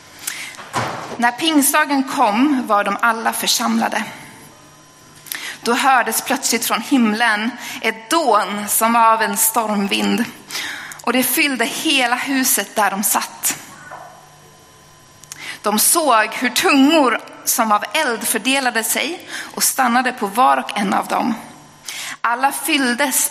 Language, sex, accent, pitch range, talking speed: Swedish, female, native, 215-280 Hz, 120 wpm